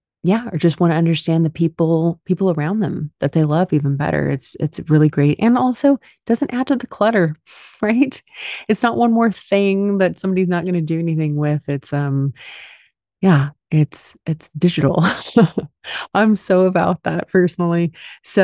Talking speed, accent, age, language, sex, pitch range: 175 wpm, American, 30-49, English, female, 145-190 Hz